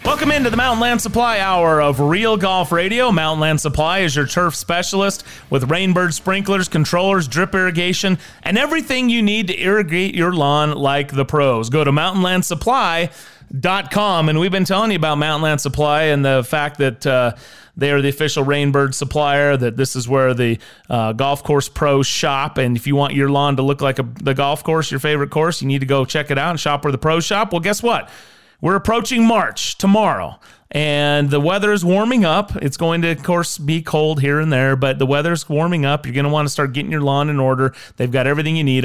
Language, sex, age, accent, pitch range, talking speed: English, male, 30-49, American, 140-180 Hz, 215 wpm